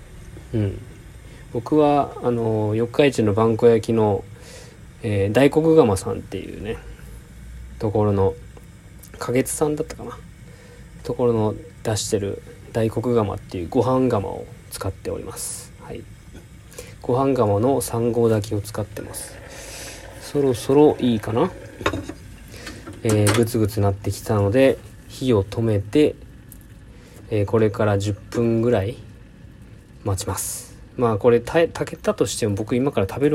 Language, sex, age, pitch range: Japanese, male, 20-39, 100-120 Hz